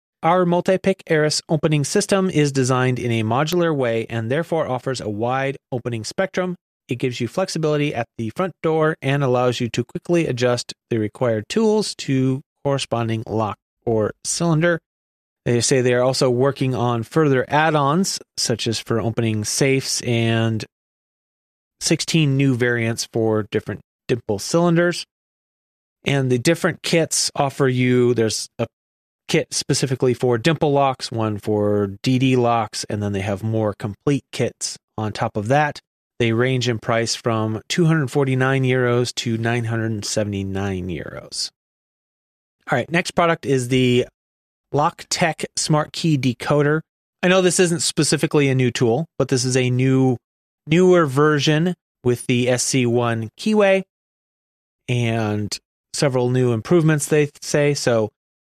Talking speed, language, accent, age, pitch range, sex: 145 wpm, English, American, 30-49, 115-155 Hz, male